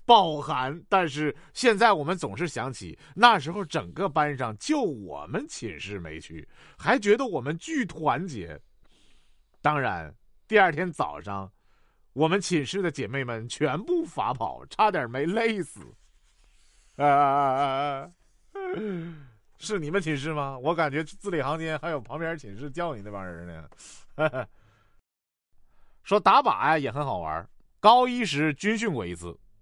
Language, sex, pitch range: Chinese, male, 135-215 Hz